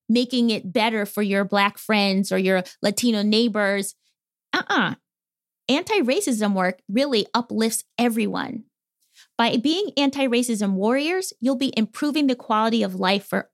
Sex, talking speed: female, 135 wpm